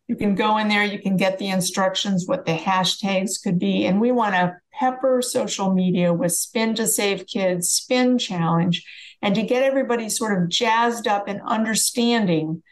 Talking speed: 185 wpm